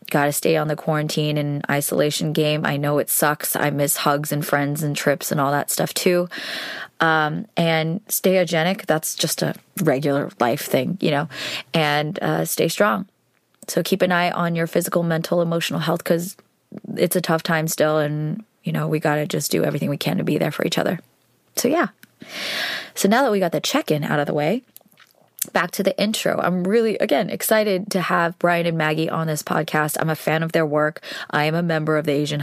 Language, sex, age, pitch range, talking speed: English, female, 20-39, 150-170 Hz, 215 wpm